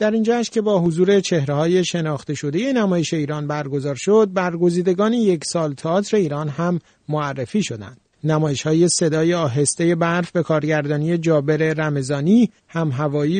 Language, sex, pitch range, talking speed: Persian, male, 155-200 Hz, 135 wpm